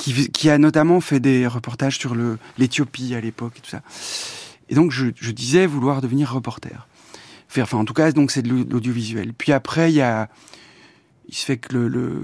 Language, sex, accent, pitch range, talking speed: French, male, French, 120-145 Hz, 205 wpm